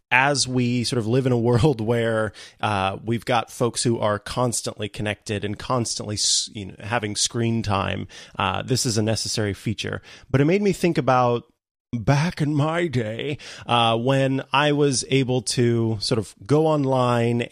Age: 30-49